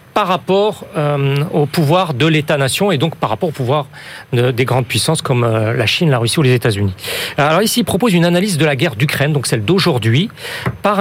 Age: 40-59